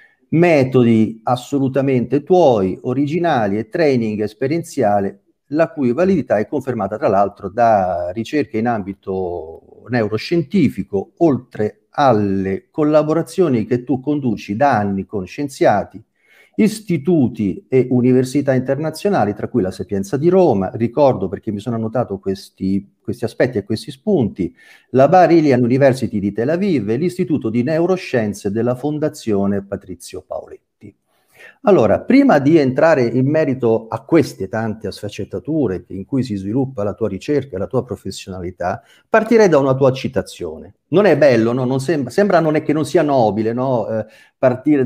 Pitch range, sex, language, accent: 110-150 Hz, male, Italian, native